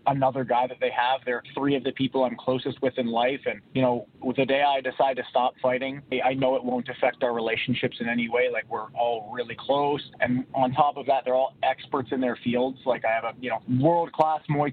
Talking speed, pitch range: 245 wpm, 130-155 Hz